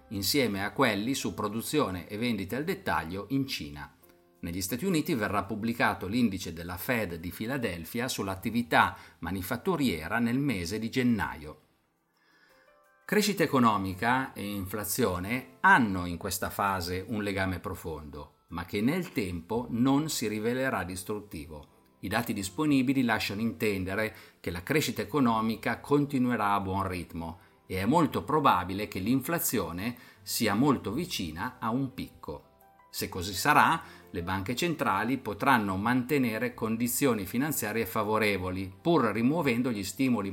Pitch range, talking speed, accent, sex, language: 90-120 Hz, 125 wpm, native, male, Italian